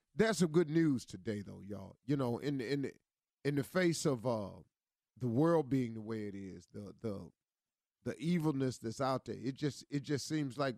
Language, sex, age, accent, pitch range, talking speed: English, male, 40-59, American, 120-150 Hz, 210 wpm